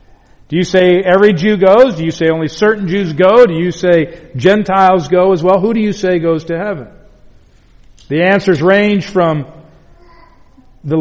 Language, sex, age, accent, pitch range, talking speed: English, male, 50-69, American, 150-195 Hz, 175 wpm